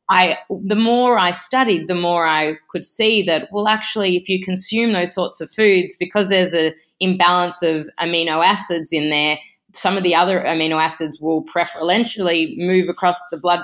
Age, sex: 20-39, female